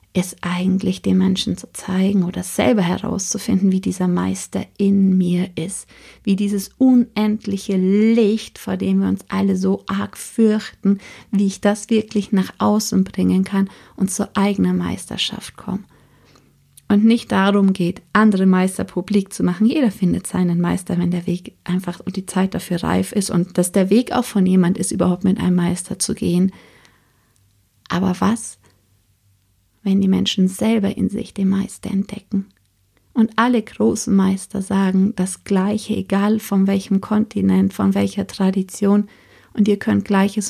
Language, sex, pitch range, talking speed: German, female, 170-200 Hz, 155 wpm